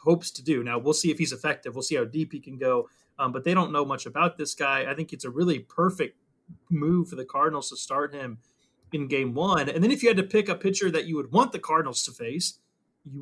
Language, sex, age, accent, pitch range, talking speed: English, male, 30-49, American, 140-180 Hz, 270 wpm